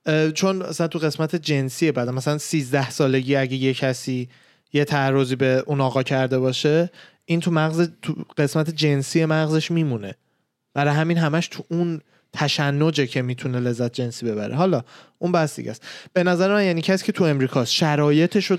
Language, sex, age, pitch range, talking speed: Persian, male, 20-39, 135-180 Hz, 170 wpm